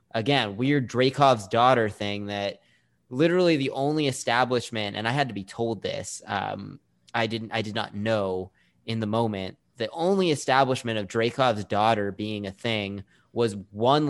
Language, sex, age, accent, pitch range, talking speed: English, male, 20-39, American, 100-135 Hz, 160 wpm